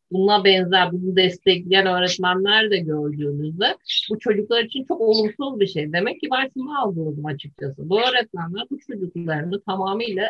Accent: native